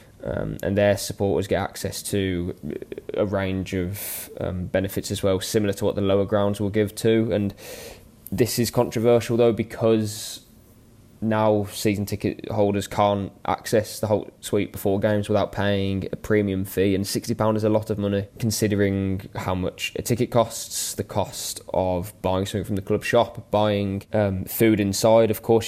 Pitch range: 95-110 Hz